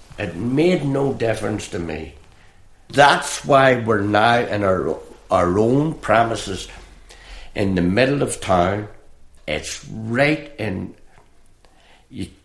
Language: English